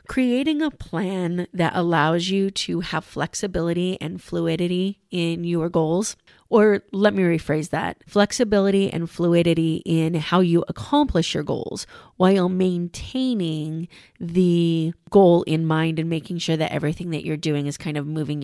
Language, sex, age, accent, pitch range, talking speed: English, female, 30-49, American, 165-200 Hz, 150 wpm